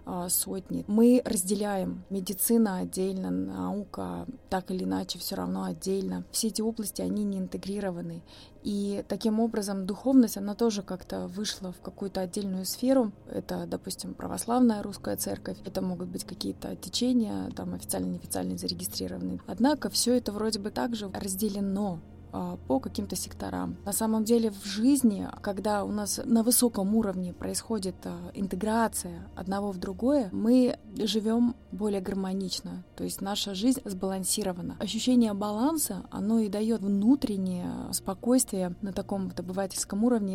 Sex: female